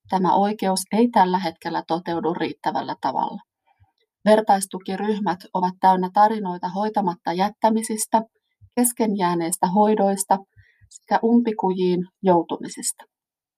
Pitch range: 185-220 Hz